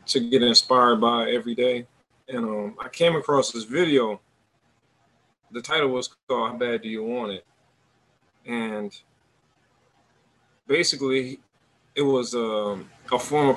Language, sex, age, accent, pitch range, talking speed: English, male, 20-39, American, 110-130 Hz, 135 wpm